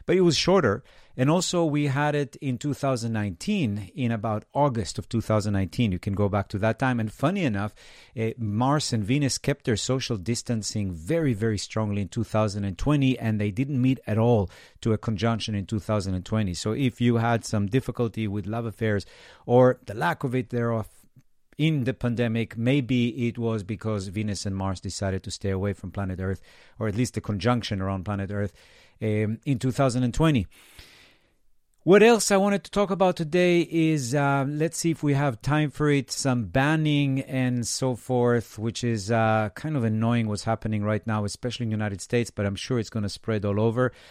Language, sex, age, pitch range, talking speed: English, male, 50-69, 105-130 Hz, 190 wpm